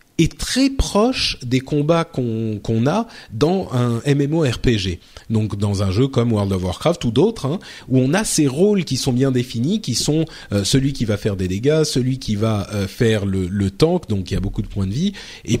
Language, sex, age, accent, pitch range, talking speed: French, male, 40-59, French, 105-150 Hz, 225 wpm